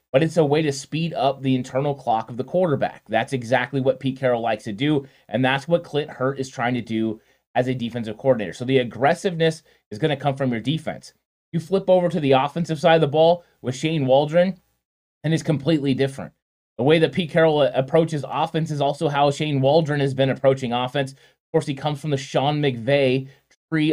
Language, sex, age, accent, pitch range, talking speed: English, male, 20-39, American, 130-155 Hz, 215 wpm